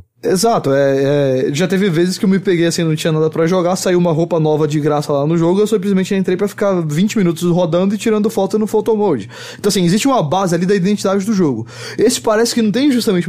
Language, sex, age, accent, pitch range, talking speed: English, male, 20-39, Brazilian, 150-195 Hz, 250 wpm